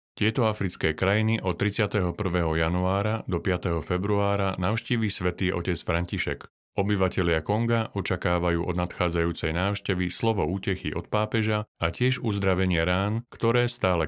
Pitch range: 90-105 Hz